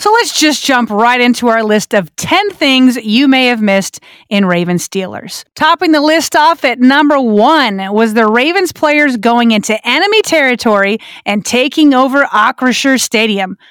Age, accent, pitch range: 30-49, American, 215-285 Hz